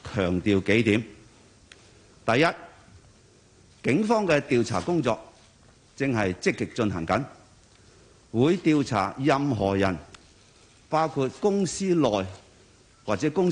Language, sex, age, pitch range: Chinese, male, 50-69, 100-140 Hz